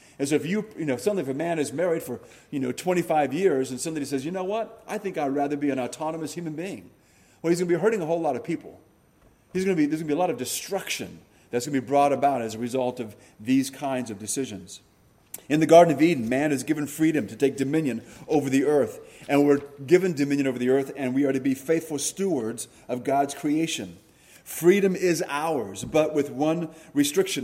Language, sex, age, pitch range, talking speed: English, male, 30-49, 135-165 Hz, 240 wpm